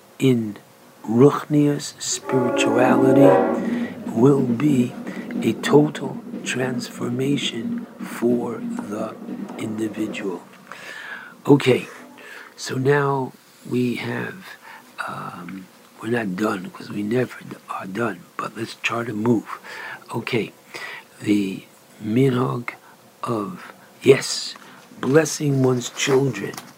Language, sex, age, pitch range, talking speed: English, male, 60-79, 110-140 Hz, 85 wpm